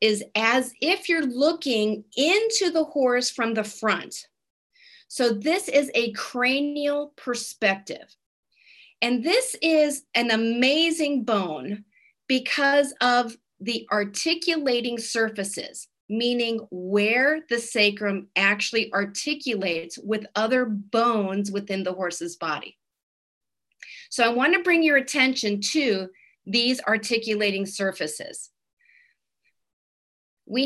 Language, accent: English, American